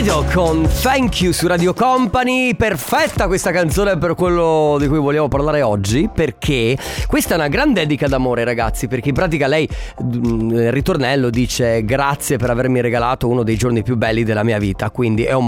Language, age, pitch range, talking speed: Italian, 30-49, 125-180 Hz, 180 wpm